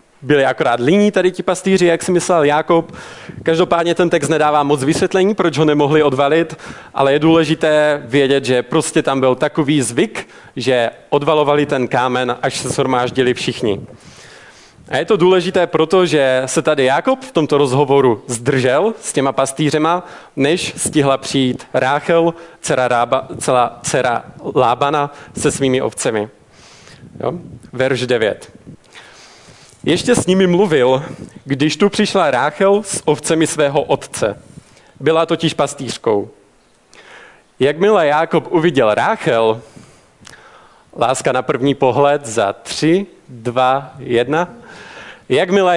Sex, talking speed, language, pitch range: male, 125 wpm, Czech, 135-175 Hz